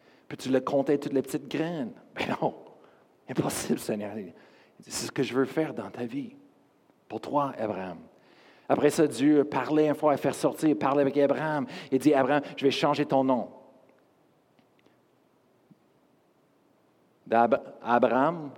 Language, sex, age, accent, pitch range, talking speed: French, male, 50-69, Canadian, 145-190 Hz, 160 wpm